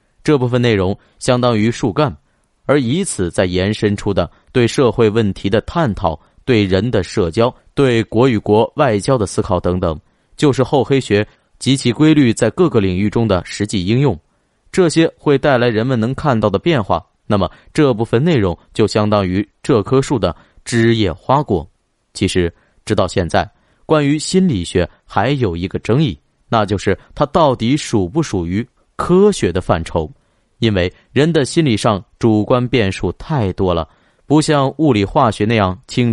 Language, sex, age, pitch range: Chinese, male, 30-49, 95-135 Hz